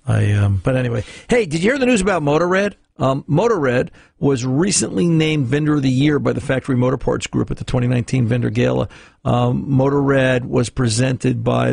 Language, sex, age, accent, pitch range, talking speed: English, male, 50-69, American, 115-150 Hz, 190 wpm